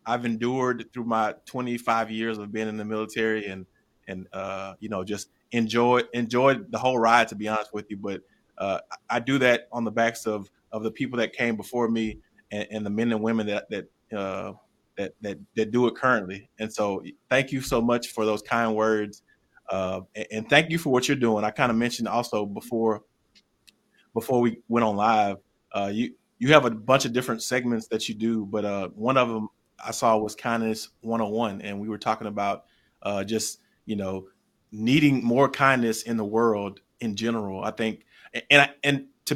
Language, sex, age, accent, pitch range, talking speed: English, male, 20-39, American, 105-125 Hz, 205 wpm